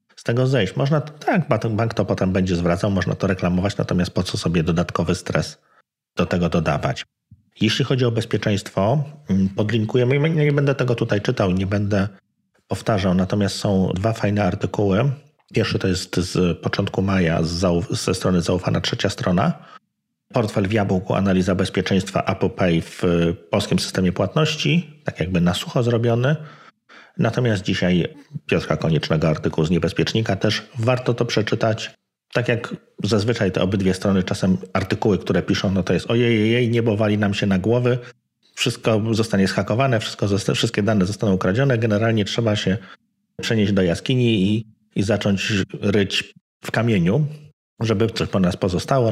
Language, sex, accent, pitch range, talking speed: Polish, male, native, 95-120 Hz, 150 wpm